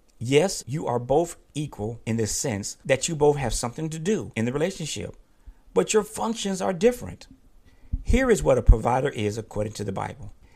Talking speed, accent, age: 190 wpm, American, 50-69